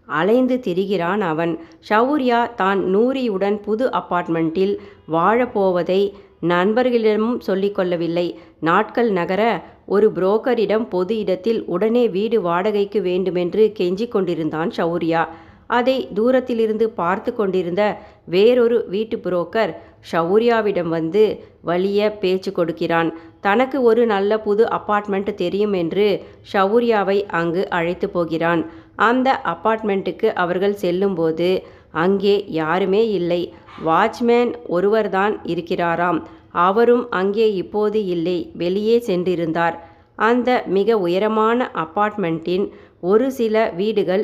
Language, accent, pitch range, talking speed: Tamil, native, 175-220 Hz, 95 wpm